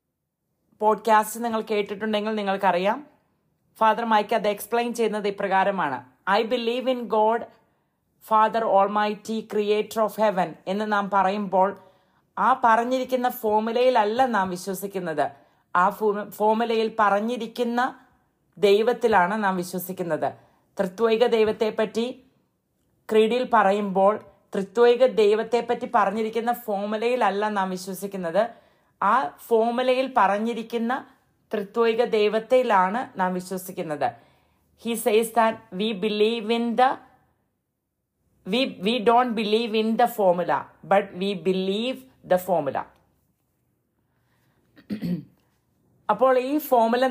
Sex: female